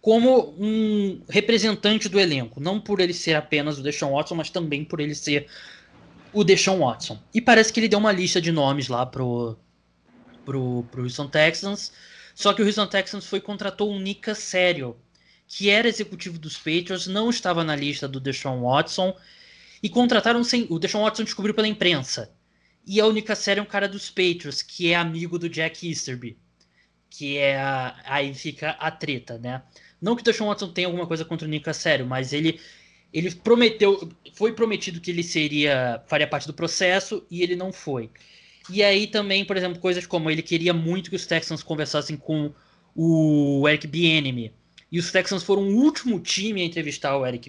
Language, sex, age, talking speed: Portuguese, male, 20-39, 190 wpm